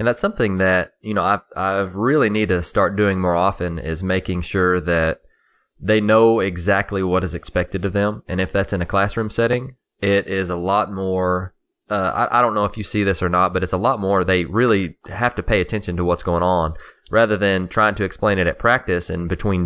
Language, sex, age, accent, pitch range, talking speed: English, male, 20-39, American, 90-110 Hz, 230 wpm